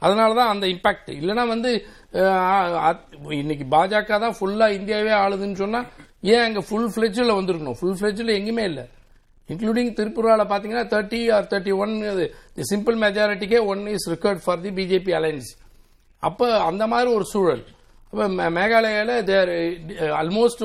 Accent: native